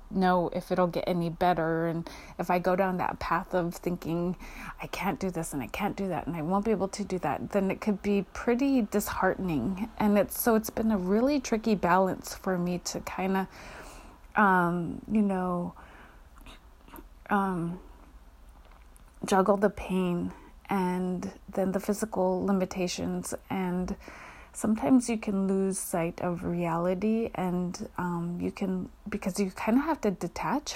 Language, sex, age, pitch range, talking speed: English, female, 30-49, 180-210 Hz, 160 wpm